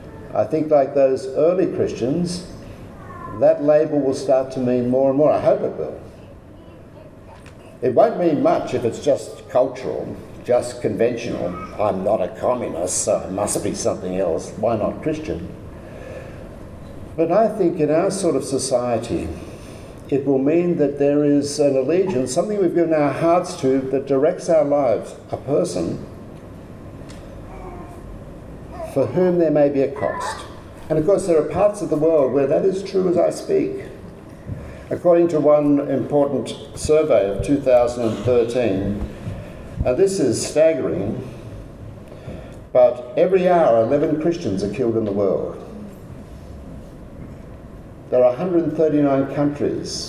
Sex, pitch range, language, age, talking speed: male, 115-160 Hz, English, 60-79, 140 wpm